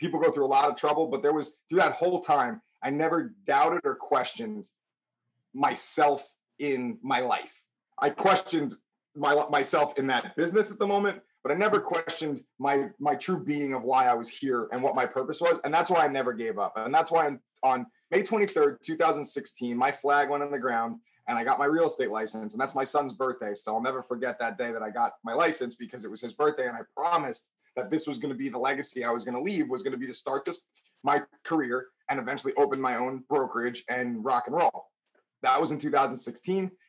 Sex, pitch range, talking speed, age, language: male, 130-175 Hz, 225 wpm, 30-49, English